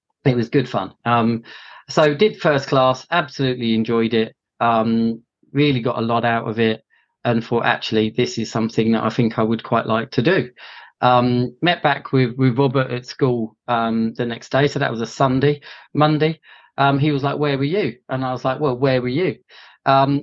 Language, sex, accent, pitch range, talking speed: English, male, British, 120-150 Hz, 205 wpm